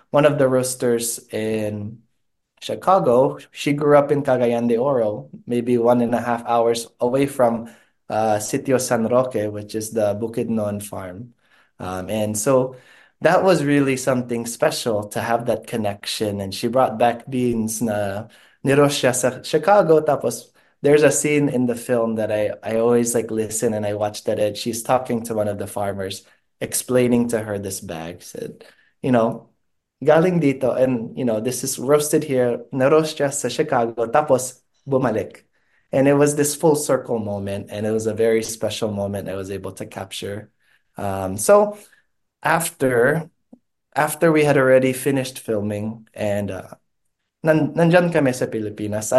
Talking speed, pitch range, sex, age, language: 160 wpm, 110-140 Hz, male, 20-39, Filipino